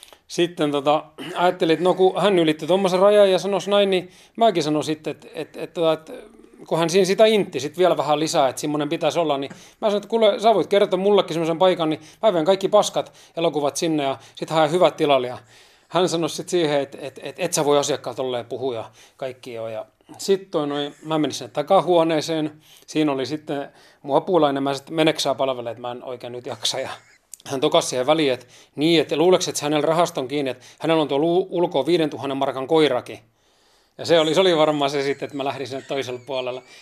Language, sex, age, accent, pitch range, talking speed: Finnish, male, 30-49, native, 140-175 Hz, 205 wpm